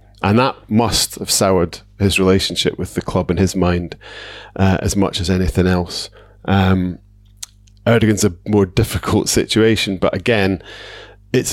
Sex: male